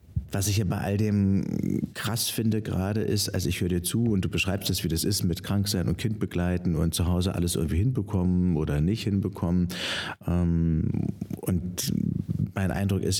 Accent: German